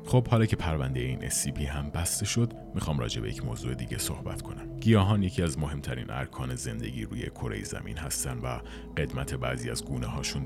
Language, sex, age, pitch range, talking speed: Persian, male, 40-59, 70-95 Hz, 190 wpm